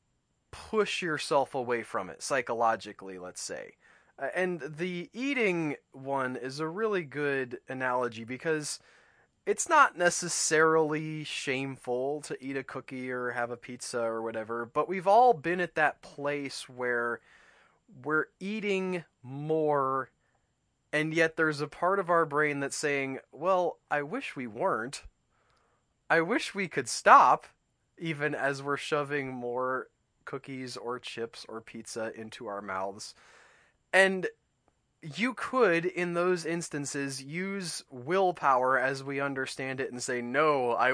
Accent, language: American, English